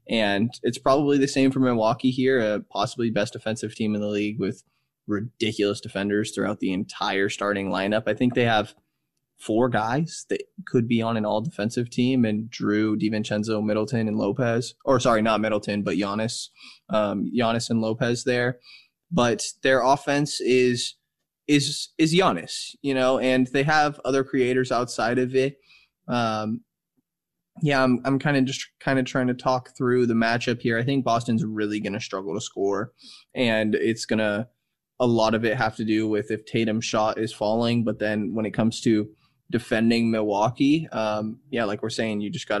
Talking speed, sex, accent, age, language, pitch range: 180 wpm, male, American, 20-39, English, 105-130 Hz